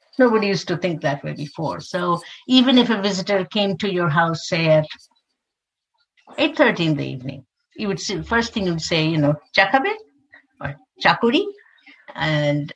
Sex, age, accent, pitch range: female, 60-79, Indian, 155-225 Hz